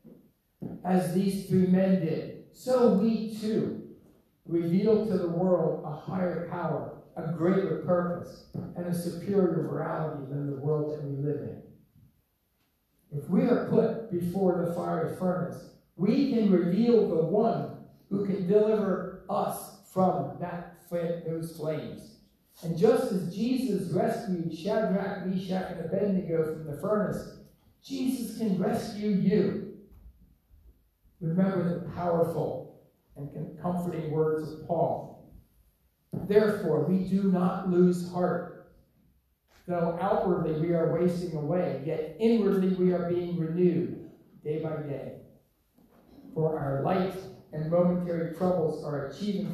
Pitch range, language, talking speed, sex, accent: 160-190 Hz, English, 125 wpm, male, American